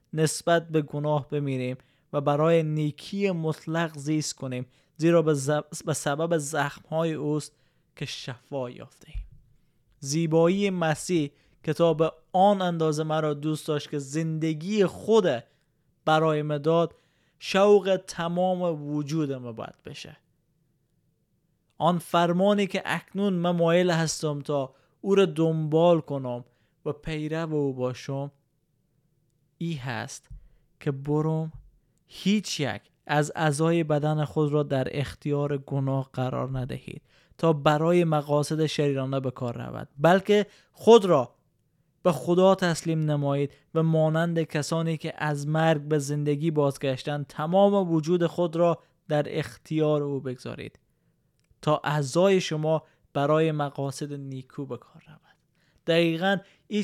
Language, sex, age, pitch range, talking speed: Persian, male, 20-39, 145-165 Hz, 115 wpm